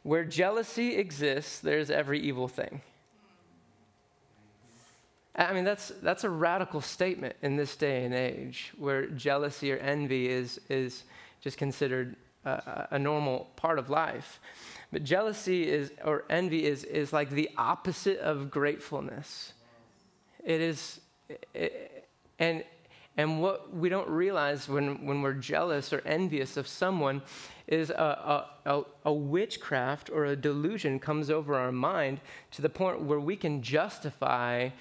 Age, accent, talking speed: 20-39, American, 140 wpm